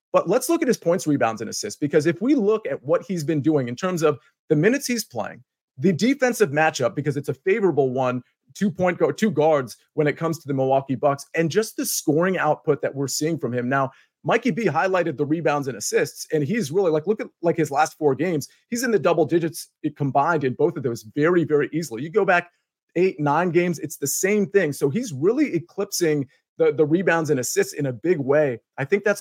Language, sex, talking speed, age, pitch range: English, male, 235 wpm, 30-49, 140-185 Hz